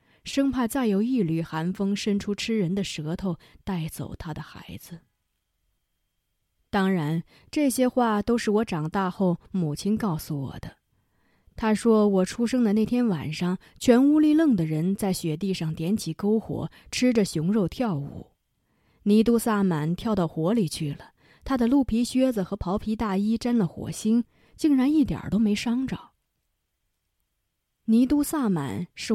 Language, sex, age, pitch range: Chinese, female, 20-39, 155-220 Hz